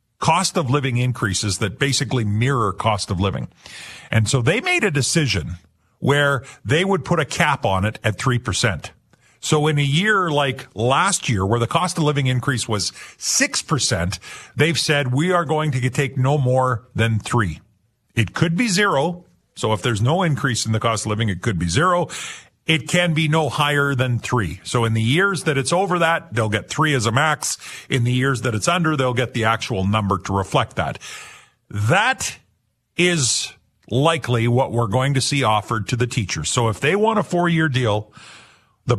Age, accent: 50-69, American